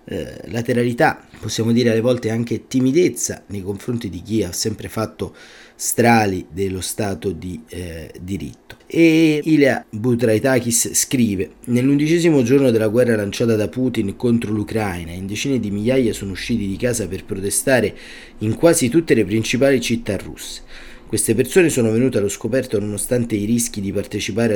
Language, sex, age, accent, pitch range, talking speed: Italian, male, 30-49, native, 100-125 Hz, 150 wpm